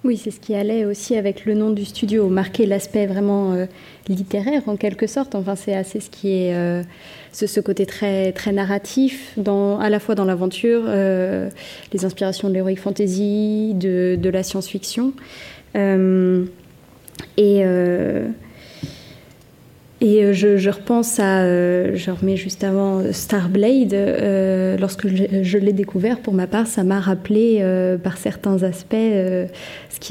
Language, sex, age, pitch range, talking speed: French, female, 20-39, 190-210 Hz, 160 wpm